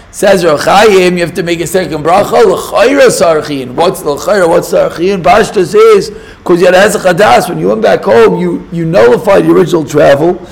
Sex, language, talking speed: male, English, 175 wpm